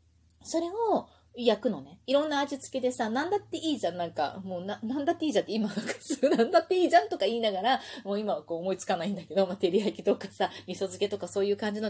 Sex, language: female, Japanese